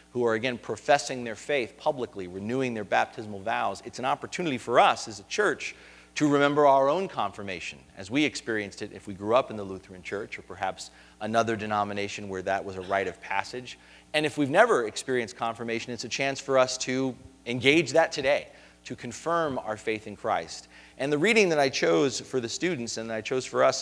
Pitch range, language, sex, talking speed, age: 100-145 Hz, English, male, 210 wpm, 40-59